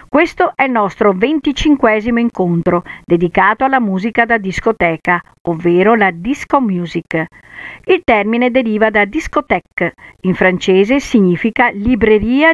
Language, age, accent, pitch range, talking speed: Italian, 50-69, native, 185-255 Hz, 115 wpm